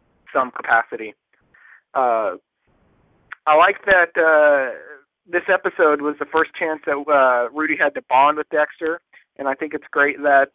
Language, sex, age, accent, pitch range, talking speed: English, male, 30-49, American, 125-155 Hz, 155 wpm